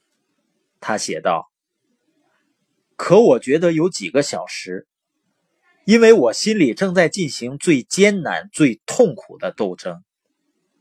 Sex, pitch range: male, 150-225 Hz